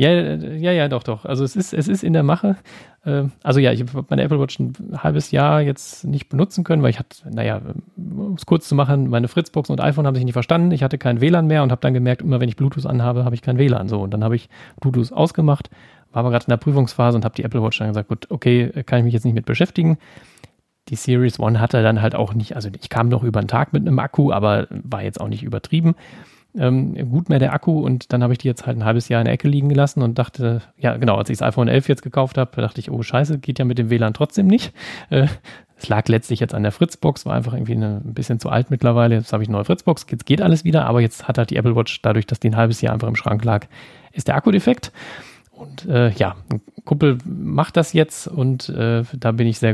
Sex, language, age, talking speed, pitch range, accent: male, German, 40-59, 265 wpm, 115-145 Hz, German